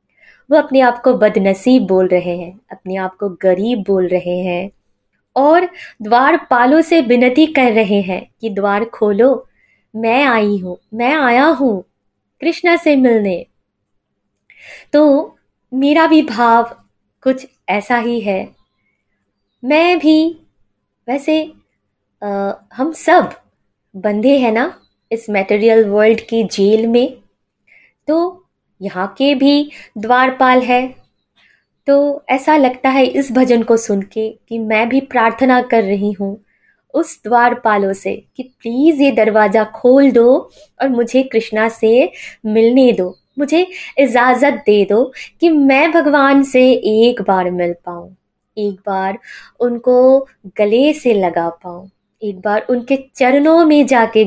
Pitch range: 205-270 Hz